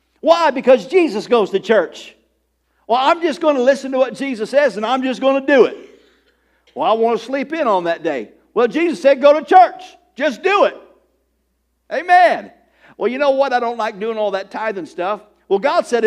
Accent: American